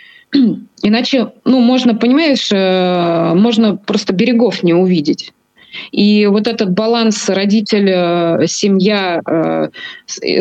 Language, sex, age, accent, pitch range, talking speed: Russian, female, 20-39, native, 180-235 Hz, 100 wpm